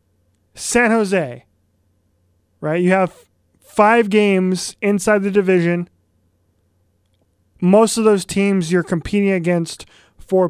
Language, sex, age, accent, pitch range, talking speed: English, male, 20-39, American, 160-205 Hz, 105 wpm